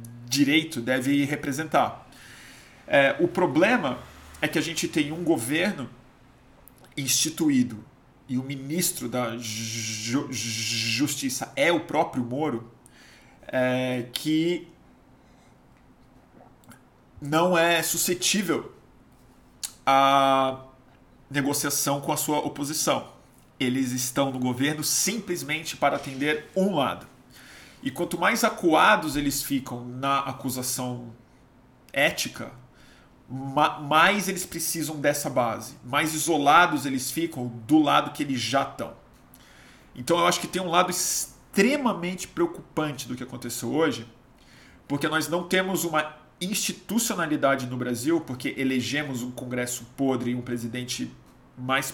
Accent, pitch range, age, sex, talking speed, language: Brazilian, 125-160 Hz, 40-59, male, 110 wpm, Portuguese